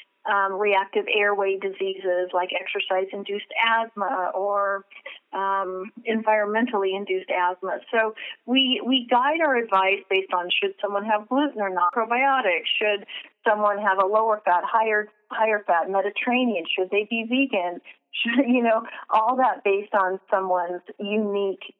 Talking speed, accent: 140 wpm, American